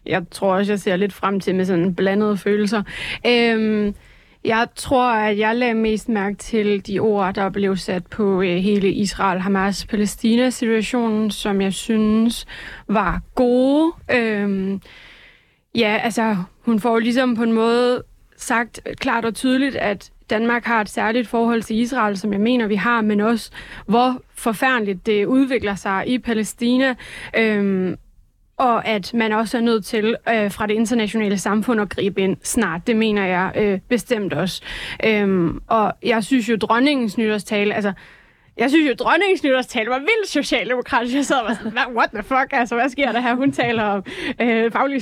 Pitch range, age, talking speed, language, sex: 205-245 Hz, 20-39, 165 wpm, Danish, female